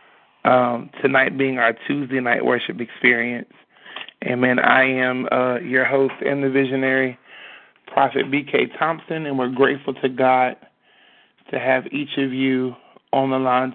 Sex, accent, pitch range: male, American, 125-140 Hz